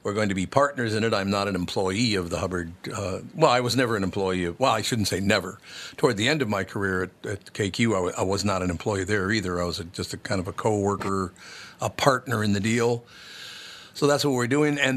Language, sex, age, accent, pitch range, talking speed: English, male, 50-69, American, 95-115 Hz, 260 wpm